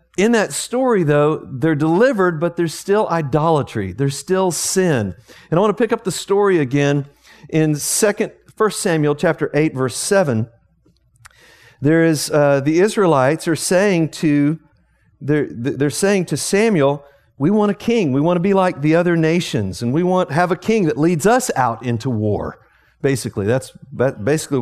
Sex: male